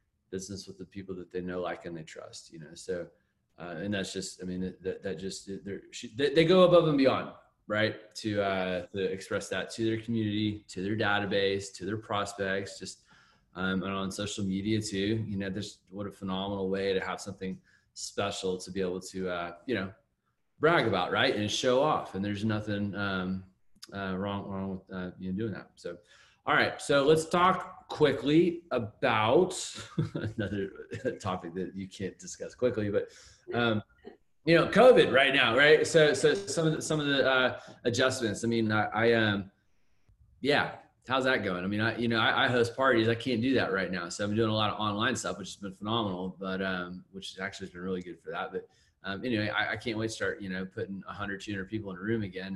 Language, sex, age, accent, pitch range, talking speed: English, male, 20-39, American, 95-115 Hz, 210 wpm